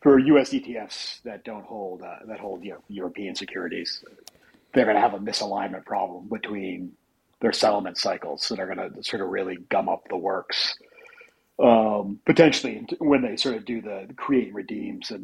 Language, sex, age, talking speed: English, male, 40-59, 190 wpm